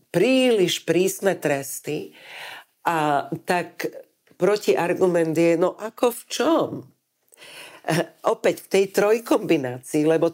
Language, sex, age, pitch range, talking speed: Slovak, female, 50-69, 170-220 Hz, 95 wpm